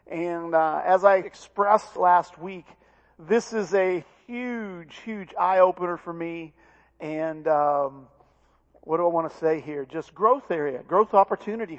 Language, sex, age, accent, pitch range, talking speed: English, male, 50-69, American, 170-215 Hz, 155 wpm